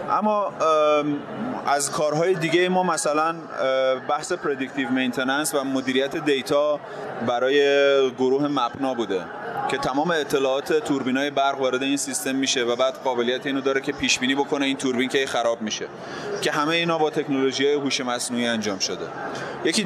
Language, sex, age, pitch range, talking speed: Persian, male, 30-49, 130-155 Hz, 150 wpm